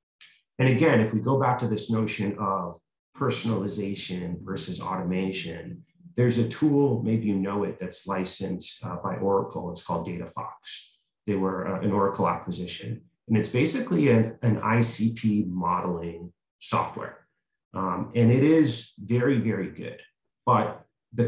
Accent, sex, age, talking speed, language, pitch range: American, male, 30-49, 140 wpm, English, 100-120 Hz